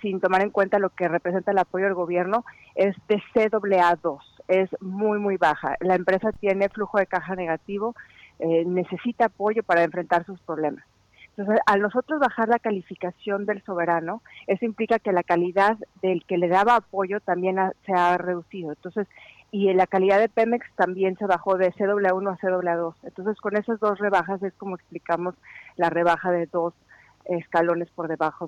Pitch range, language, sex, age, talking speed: 180-210 Hz, Spanish, female, 40-59, 175 wpm